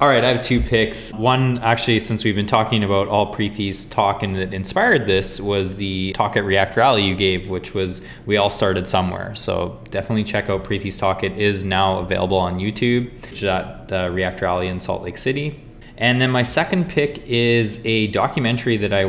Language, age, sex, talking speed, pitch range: English, 20-39, male, 200 wpm, 95-115 Hz